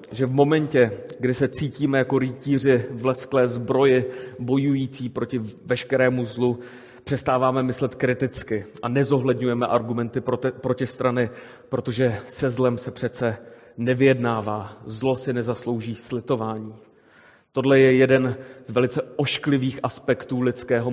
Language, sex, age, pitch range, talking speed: Czech, male, 30-49, 115-130 Hz, 120 wpm